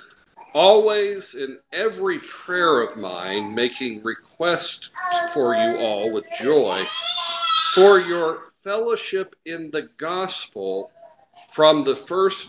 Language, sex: English, male